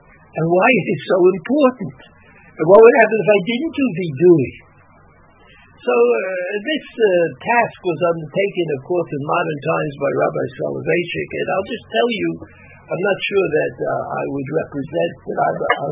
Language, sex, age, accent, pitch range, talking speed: English, male, 60-79, American, 155-220 Hz, 190 wpm